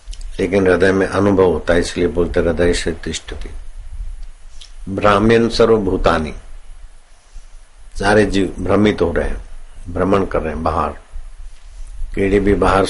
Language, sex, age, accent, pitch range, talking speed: Hindi, male, 60-79, native, 75-95 Hz, 135 wpm